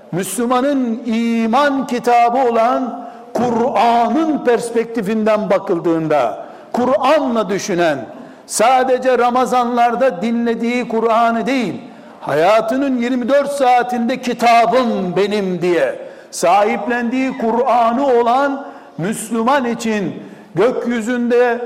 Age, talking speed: 60-79, 70 wpm